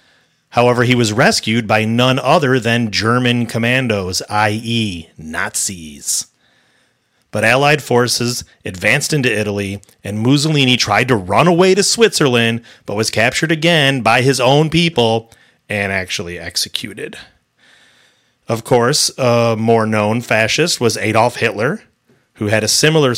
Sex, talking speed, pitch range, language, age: male, 130 wpm, 105-130 Hz, English, 30-49